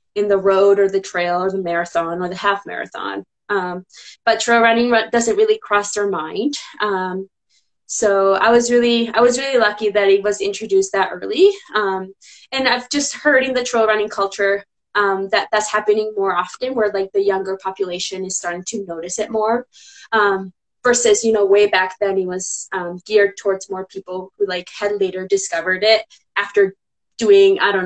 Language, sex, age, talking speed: English, female, 20-39, 190 wpm